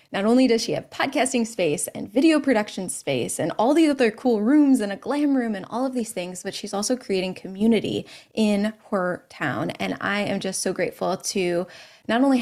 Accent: American